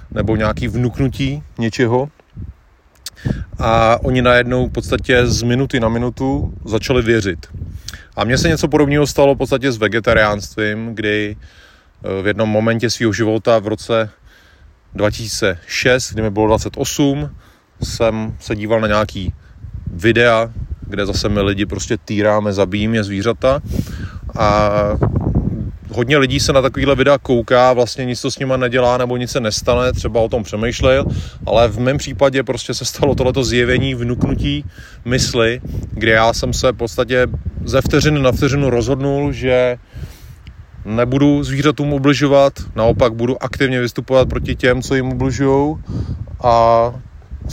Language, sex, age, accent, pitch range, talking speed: Czech, male, 30-49, native, 105-130 Hz, 140 wpm